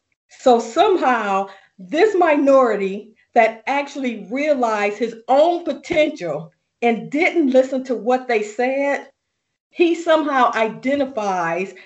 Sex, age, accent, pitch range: female, 40-59, American, 200-270 Hz